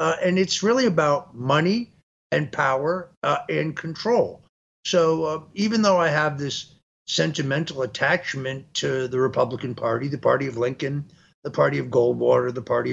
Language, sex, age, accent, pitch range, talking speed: English, male, 50-69, American, 140-185 Hz, 160 wpm